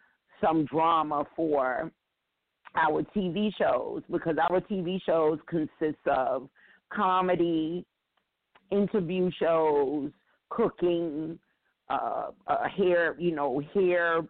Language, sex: English, female